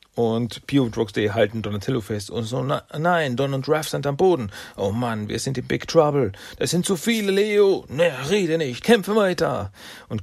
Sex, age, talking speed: male, 40-59, 205 wpm